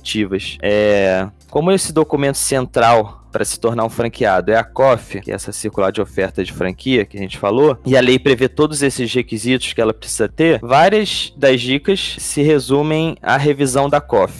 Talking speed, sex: 185 wpm, male